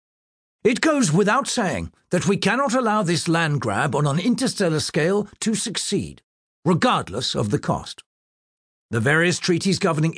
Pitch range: 165-220 Hz